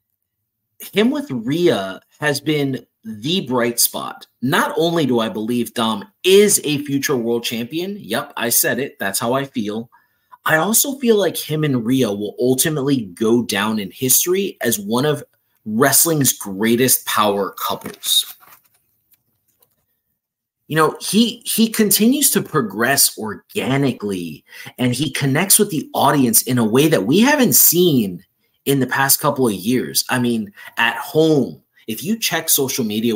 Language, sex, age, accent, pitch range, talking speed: English, male, 30-49, American, 115-180 Hz, 150 wpm